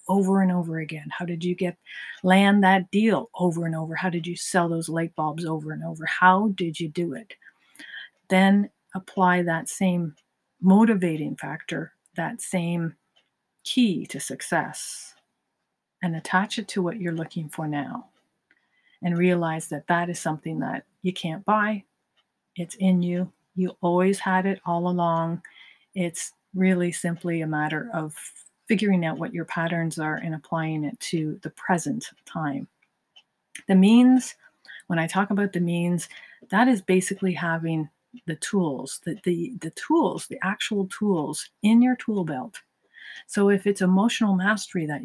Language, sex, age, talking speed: English, female, 50-69, 155 wpm